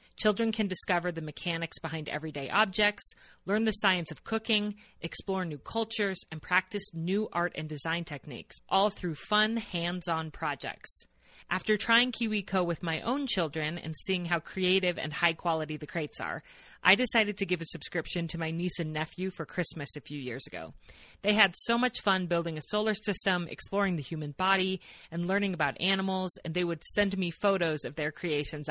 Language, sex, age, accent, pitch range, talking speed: English, female, 30-49, American, 160-205 Hz, 185 wpm